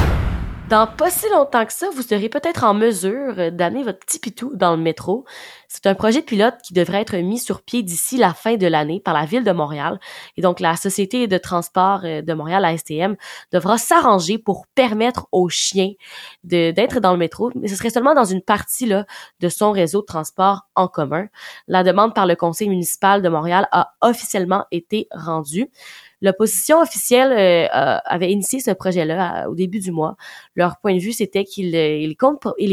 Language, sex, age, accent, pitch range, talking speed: French, female, 20-39, Canadian, 175-215 Hz, 190 wpm